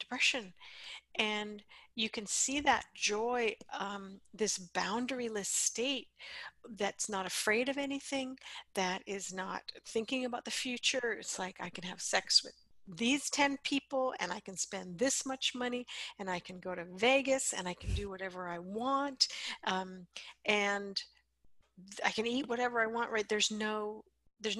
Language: English